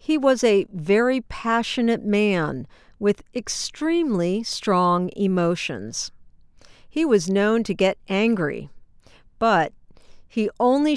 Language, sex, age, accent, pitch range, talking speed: English, female, 50-69, American, 180-240 Hz, 105 wpm